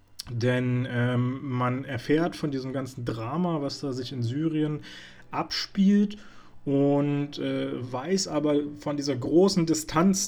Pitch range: 120-160 Hz